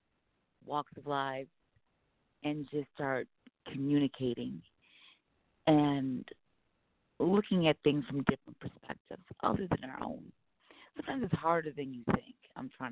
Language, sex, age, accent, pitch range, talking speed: English, female, 40-59, American, 140-165 Hz, 120 wpm